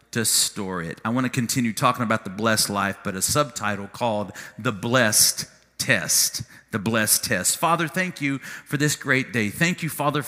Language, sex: English, male